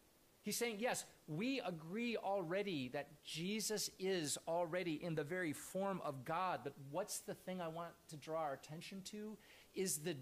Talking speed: 170 wpm